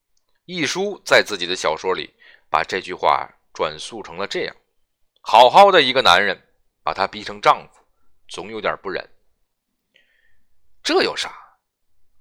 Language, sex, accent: Chinese, male, native